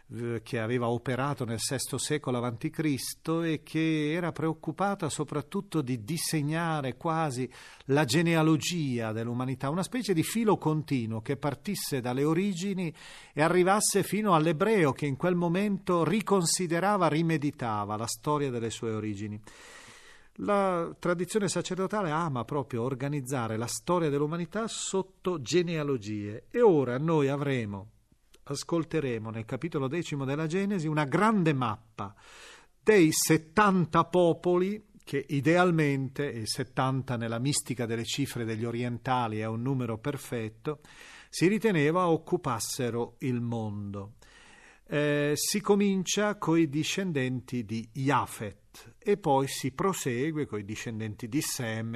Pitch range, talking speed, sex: 120-165 Hz, 120 wpm, male